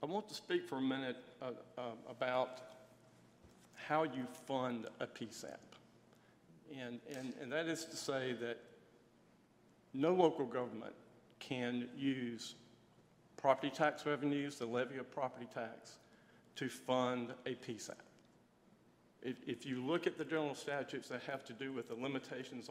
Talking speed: 145 wpm